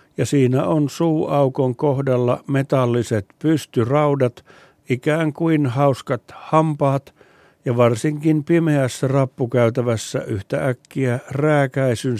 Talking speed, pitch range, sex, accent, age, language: 90 wpm, 120-145 Hz, male, native, 60-79, Finnish